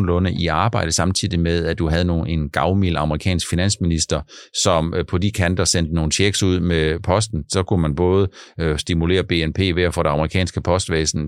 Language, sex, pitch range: Danish, male, 80-100 Hz